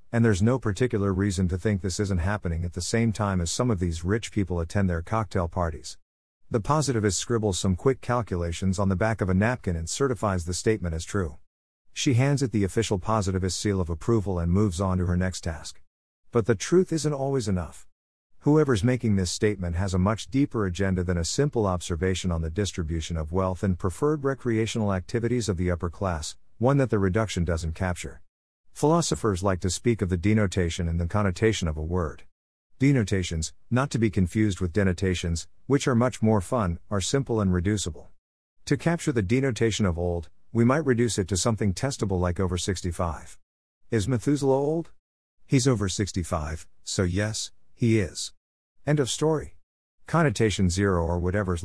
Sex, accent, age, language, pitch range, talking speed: male, American, 50-69, English, 90-115 Hz, 185 wpm